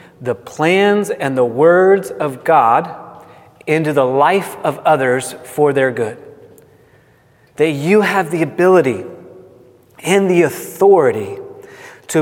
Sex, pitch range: male, 125-170 Hz